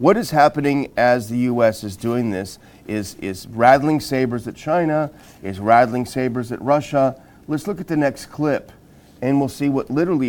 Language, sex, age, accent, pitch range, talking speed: English, male, 40-59, American, 120-150 Hz, 180 wpm